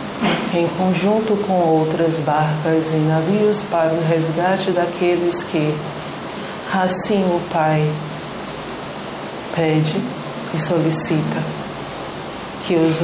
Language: Portuguese